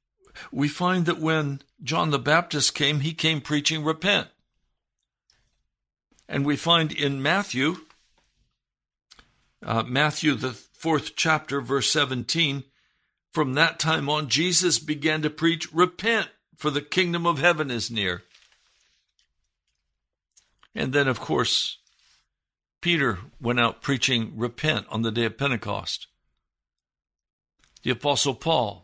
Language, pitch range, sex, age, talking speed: English, 120-170 Hz, male, 60-79, 120 wpm